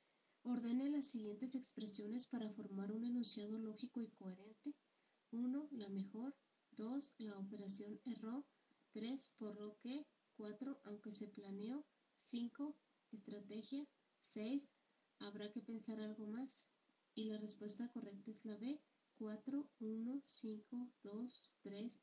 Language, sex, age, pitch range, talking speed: Spanish, female, 20-39, 210-250 Hz, 125 wpm